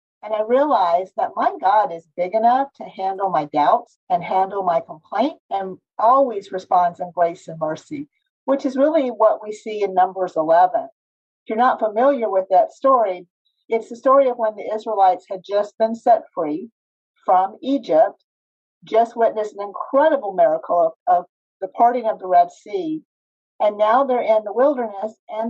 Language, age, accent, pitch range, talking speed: English, 50-69, American, 185-270 Hz, 175 wpm